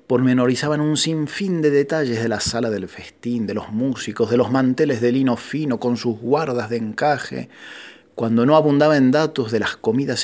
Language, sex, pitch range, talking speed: Spanish, male, 110-140 Hz, 190 wpm